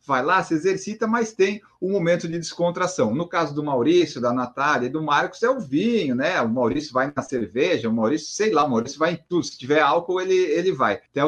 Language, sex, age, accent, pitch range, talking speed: Portuguese, male, 30-49, Brazilian, 140-185 Hz, 235 wpm